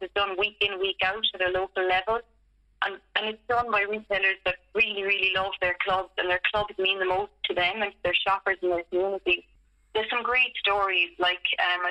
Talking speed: 190 wpm